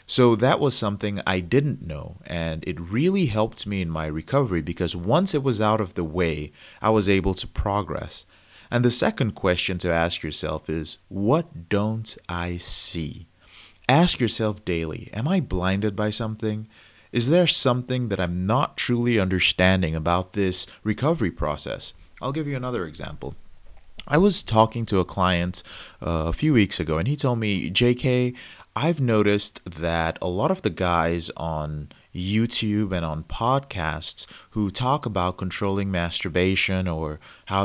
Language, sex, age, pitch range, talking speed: English, male, 30-49, 85-120 Hz, 160 wpm